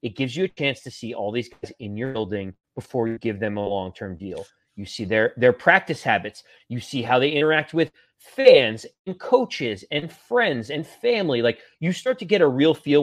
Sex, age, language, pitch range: male, 30-49, English, 120-160 Hz